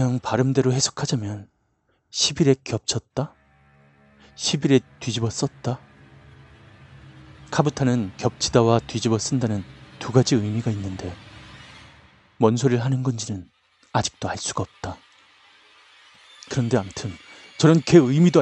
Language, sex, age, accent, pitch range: Korean, male, 30-49, native, 100-135 Hz